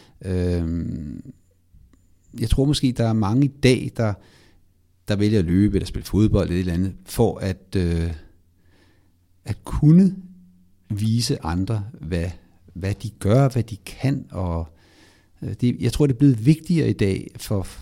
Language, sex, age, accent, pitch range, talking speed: Danish, male, 60-79, native, 90-130 Hz, 150 wpm